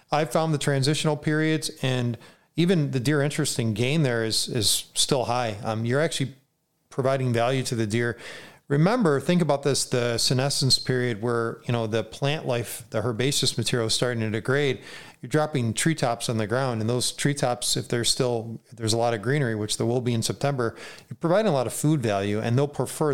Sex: male